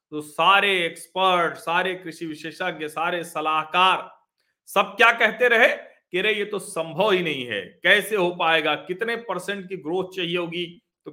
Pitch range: 165-215 Hz